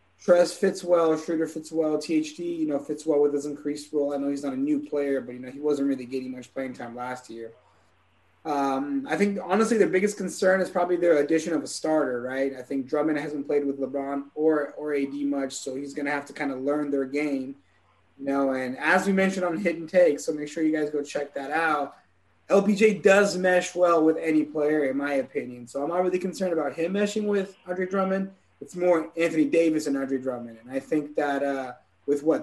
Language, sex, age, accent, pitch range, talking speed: English, male, 20-39, American, 140-170 Hz, 230 wpm